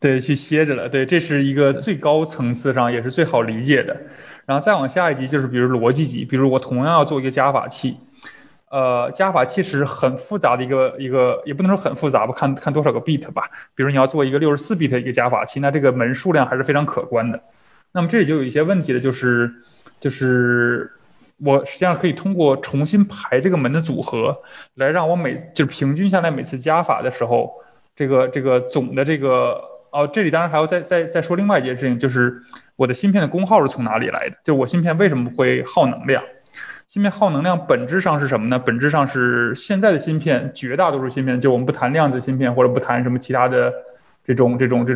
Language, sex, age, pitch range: English, male, 20-39, 125-160 Hz